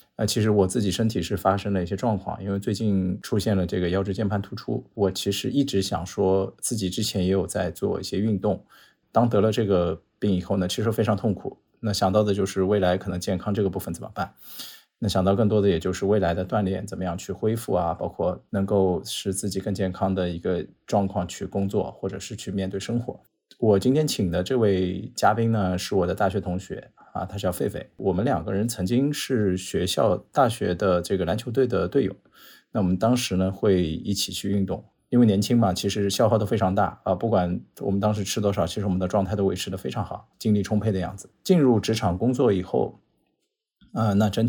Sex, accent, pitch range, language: male, native, 95-110 Hz, Chinese